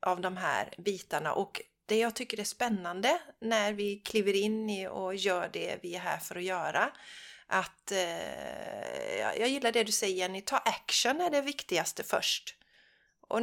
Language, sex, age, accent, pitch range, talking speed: Swedish, female, 30-49, native, 185-235 Hz, 175 wpm